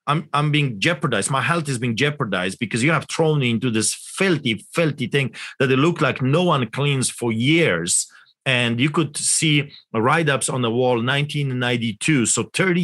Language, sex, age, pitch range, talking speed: English, male, 40-59, 115-145 Hz, 180 wpm